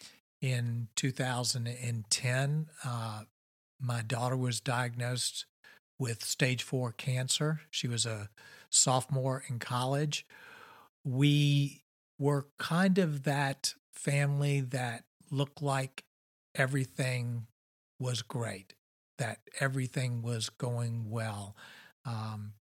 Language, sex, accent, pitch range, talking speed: English, male, American, 120-140 Hz, 95 wpm